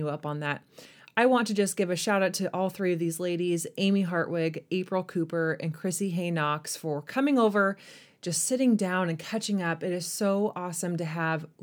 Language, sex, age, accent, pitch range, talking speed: English, female, 20-39, American, 165-195 Hz, 205 wpm